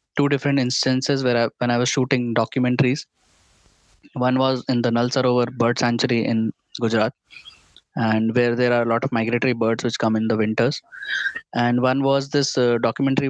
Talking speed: 180 wpm